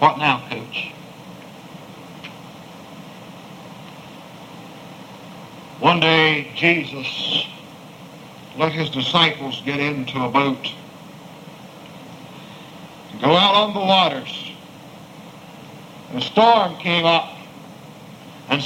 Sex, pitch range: male, 145-170 Hz